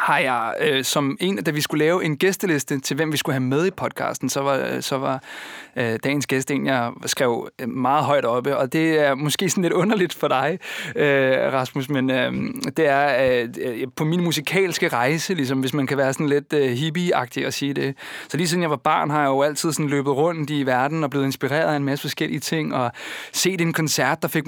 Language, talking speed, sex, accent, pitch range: Danish, 230 wpm, male, native, 135-160 Hz